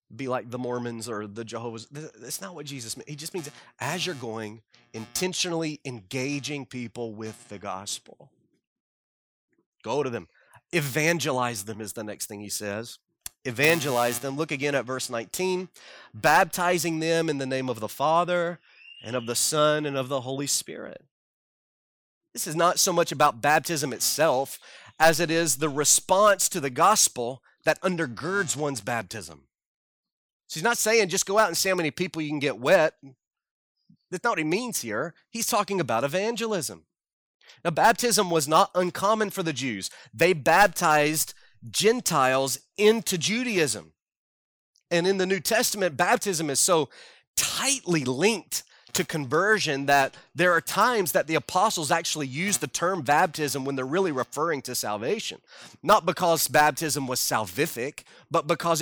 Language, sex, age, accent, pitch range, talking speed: English, male, 30-49, American, 125-175 Hz, 160 wpm